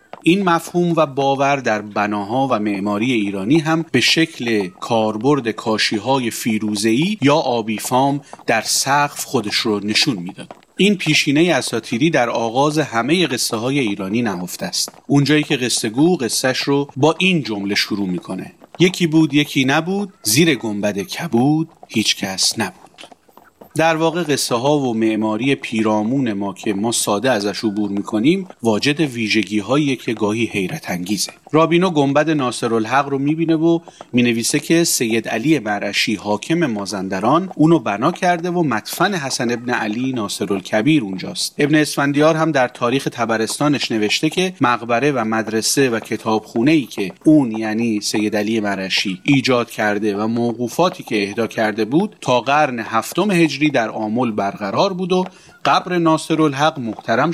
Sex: male